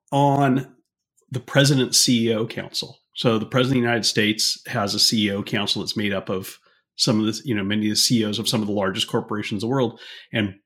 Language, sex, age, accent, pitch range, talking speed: English, male, 30-49, American, 110-135 Hz, 220 wpm